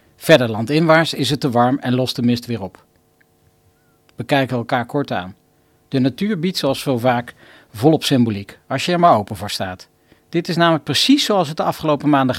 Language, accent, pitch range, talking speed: Dutch, Dutch, 120-160 Hz, 200 wpm